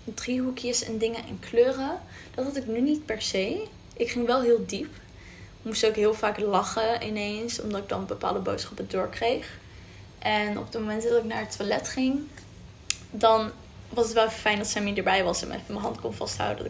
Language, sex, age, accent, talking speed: Dutch, female, 10-29, Dutch, 195 wpm